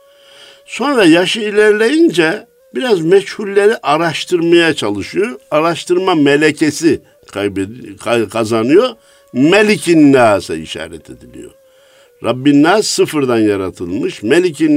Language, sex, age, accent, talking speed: Turkish, male, 60-79, native, 80 wpm